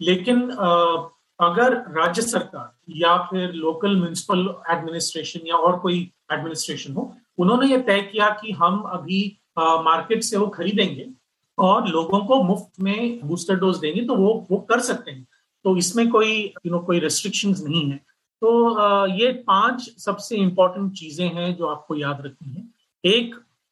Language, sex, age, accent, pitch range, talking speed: Hindi, male, 40-59, native, 170-200 Hz, 150 wpm